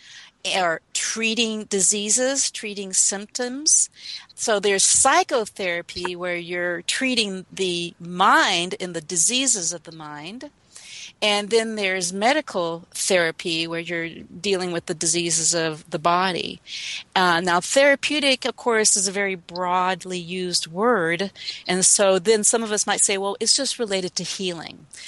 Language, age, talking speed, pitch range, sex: English, 40-59, 140 wpm, 175-220 Hz, female